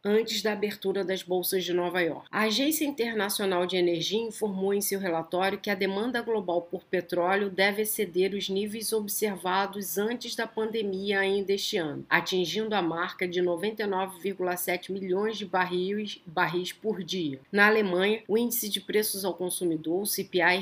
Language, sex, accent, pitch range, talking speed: Portuguese, female, Brazilian, 180-215 Hz, 160 wpm